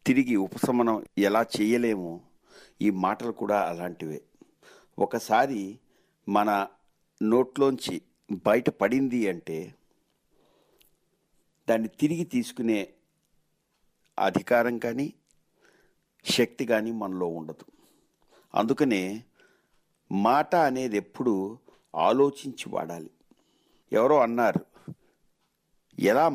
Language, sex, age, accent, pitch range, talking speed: Telugu, male, 60-79, native, 110-145 Hz, 75 wpm